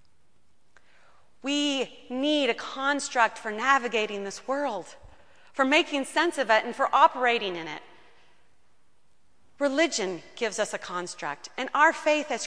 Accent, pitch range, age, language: American, 195-255 Hz, 30-49, English